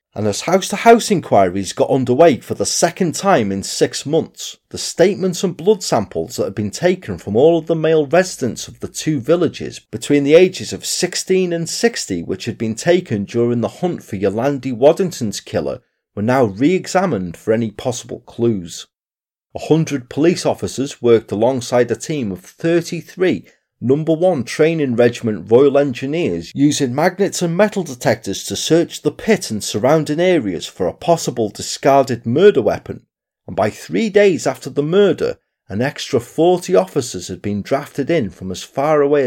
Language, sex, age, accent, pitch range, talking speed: English, male, 40-59, British, 110-175 Hz, 170 wpm